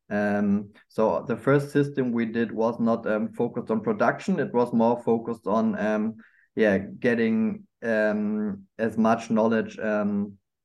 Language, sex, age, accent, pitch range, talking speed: English, male, 20-39, German, 110-135 Hz, 145 wpm